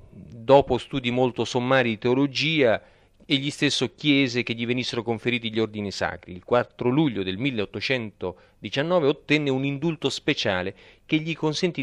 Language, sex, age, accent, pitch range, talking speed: Italian, male, 40-59, native, 105-135 Hz, 145 wpm